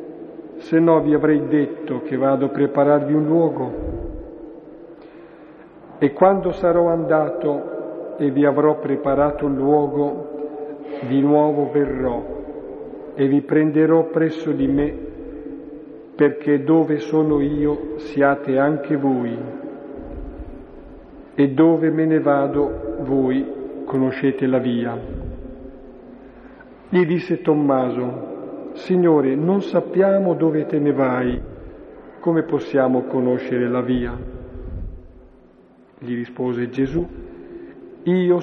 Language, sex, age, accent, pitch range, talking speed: Italian, male, 50-69, native, 135-155 Hz, 100 wpm